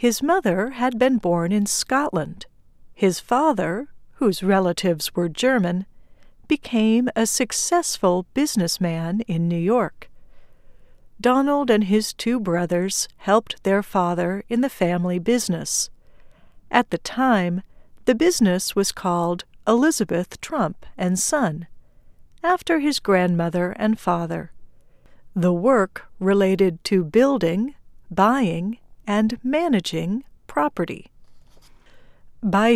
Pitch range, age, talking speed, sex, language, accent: 180-245 Hz, 60-79, 105 wpm, female, English, American